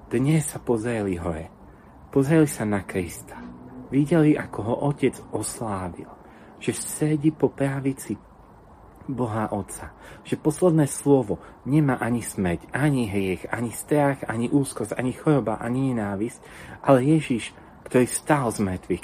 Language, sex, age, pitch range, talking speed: Slovak, male, 40-59, 100-140 Hz, 130 wpm